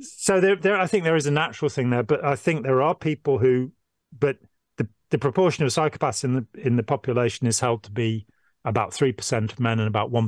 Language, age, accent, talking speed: English, 40-59, British, 240 wpm